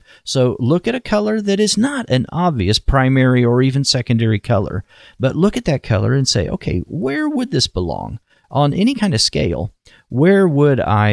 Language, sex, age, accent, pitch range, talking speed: English, male, 40-59, American, 105-170 Hz, 190 wpm